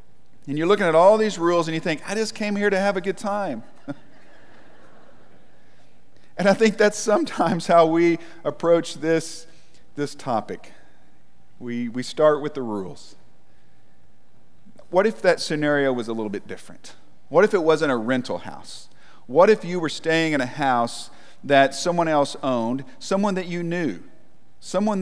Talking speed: 165 wpm